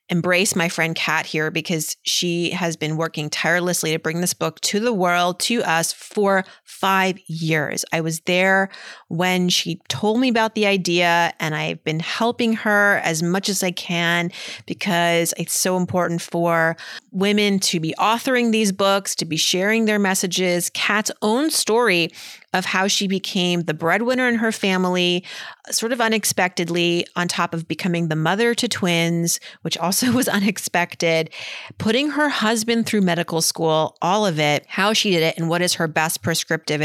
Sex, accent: female, American